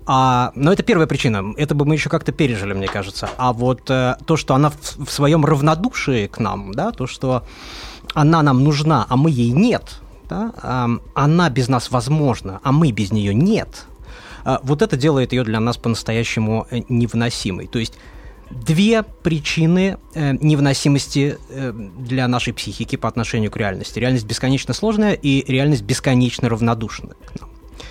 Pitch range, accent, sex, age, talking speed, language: 120-160 Hz, native, male, 20-39, 170 wpm, Russian